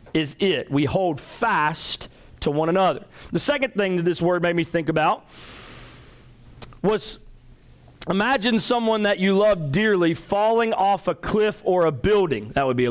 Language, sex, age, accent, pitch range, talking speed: English, male, 40-59, American, 140-195 Hz, 165 wpm